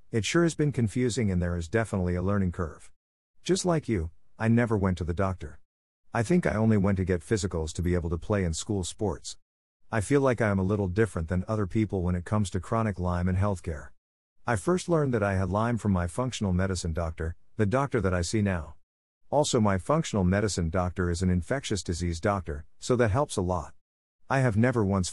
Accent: American